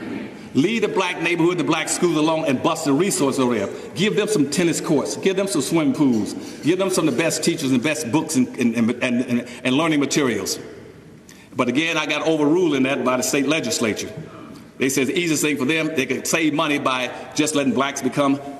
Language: English